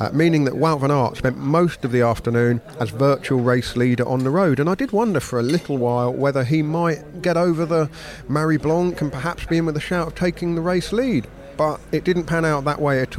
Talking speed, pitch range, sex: 245 wpm, 125-155 Hz, male